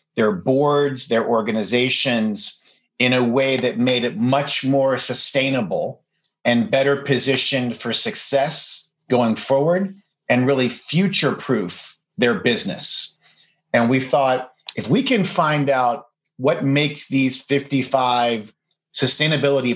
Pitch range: 120-145 Hz